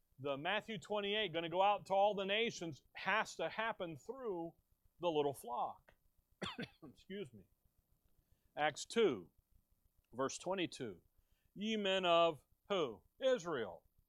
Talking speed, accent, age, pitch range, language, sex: 125 wpm, American, 40-59, 145-205 Hz, English, male